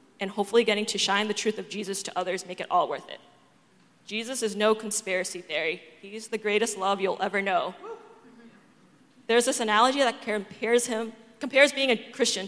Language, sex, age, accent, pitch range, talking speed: English, female, 20-39, American, 195-225 Hz, 180 wpm